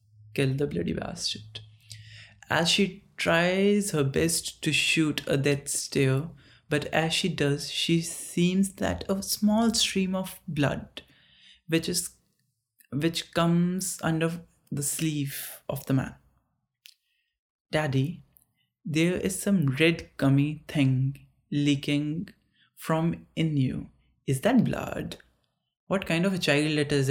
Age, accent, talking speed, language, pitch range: 30-49, Indian, 125 wpm, English, 140-175 Hz